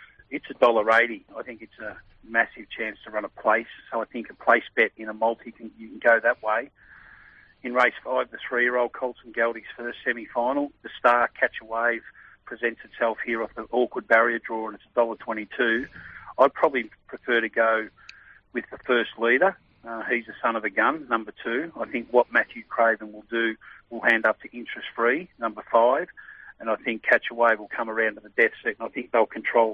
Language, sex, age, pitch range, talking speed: English, male, 40-59, 110-120 Hz, 210 wpm